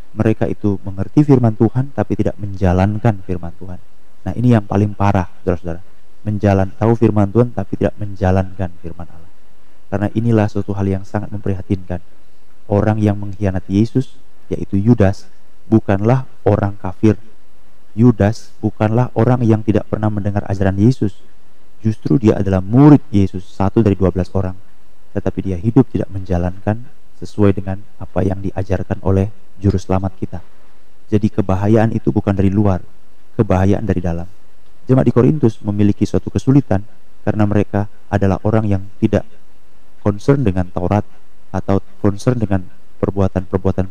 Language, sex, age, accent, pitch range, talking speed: Indonesian, male, 30-49, native, 95-110 Hz, 140 wpm